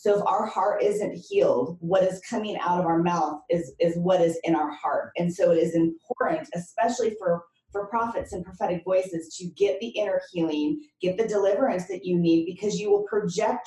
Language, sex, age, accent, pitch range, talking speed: English, female, 30-49, American, 170-210 Hz, 205 wpm